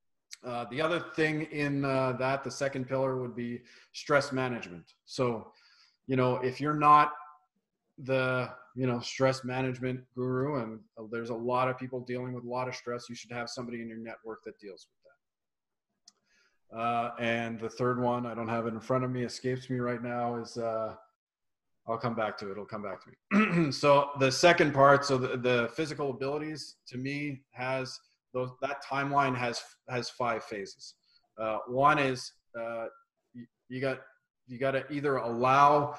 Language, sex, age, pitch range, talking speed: English, male, 30-49, 120-140 Hz, 180 wpm